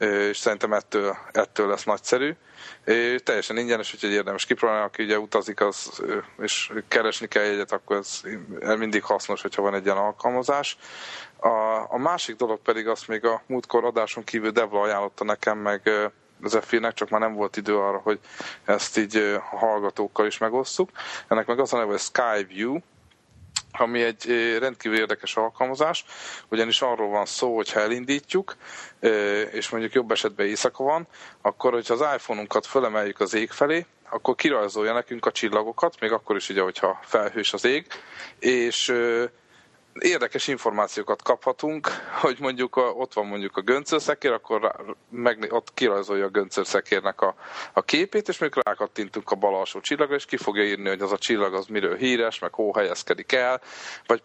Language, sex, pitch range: Hungarian, male, 105-125 Hz